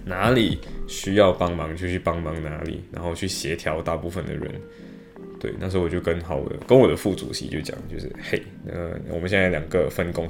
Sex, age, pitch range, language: male, 10-29, 85-95 Hz, Chinese